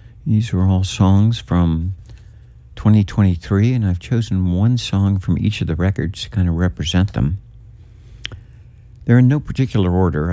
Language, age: English, 60-79